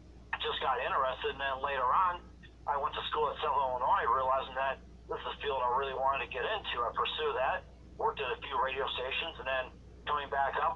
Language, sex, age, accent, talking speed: English, male, 40-59, American, 225 wpm